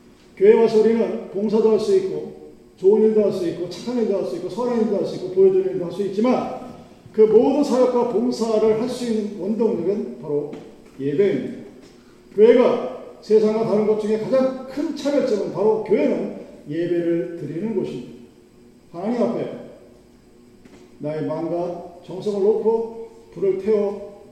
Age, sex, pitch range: 40-59, male, 180-235 Hz